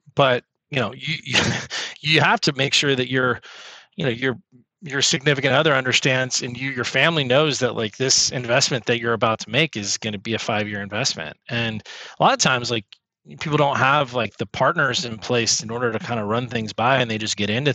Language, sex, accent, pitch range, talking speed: English, male, American, 110-140 Hz, 225 wpm